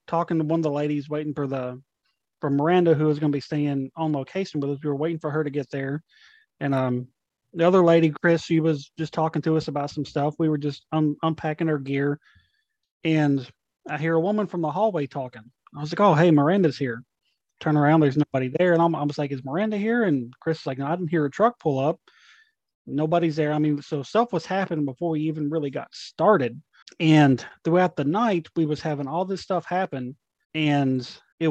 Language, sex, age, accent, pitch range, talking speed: English, male, 30-49, American, 145-165 Hz, 220 wpm